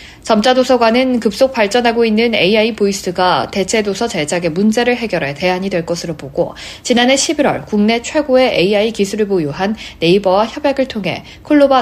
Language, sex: Korean, female